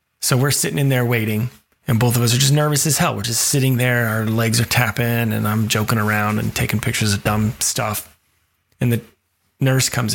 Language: English